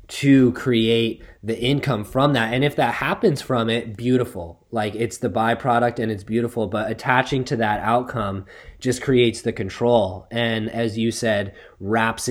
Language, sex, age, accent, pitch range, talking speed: English, male, 20-39, American, 105-125 Hz, 165 wpm